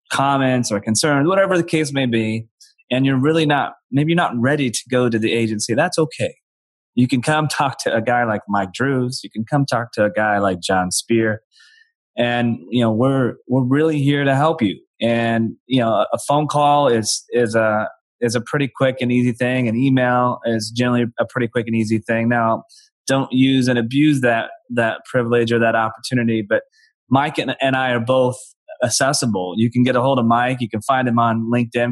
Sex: male